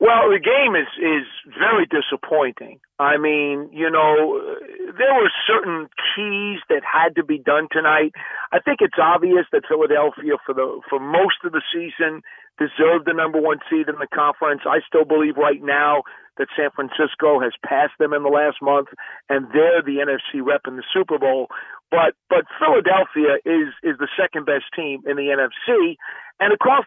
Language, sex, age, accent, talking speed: English, male, 50-69, American, 175 wpm